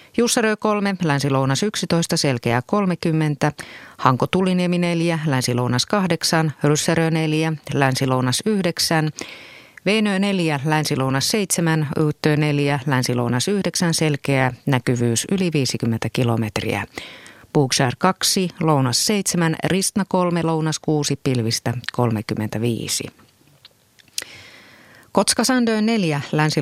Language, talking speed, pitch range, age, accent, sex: Finnish, 90 wpm, 135-180 Hz, 30-49, native, female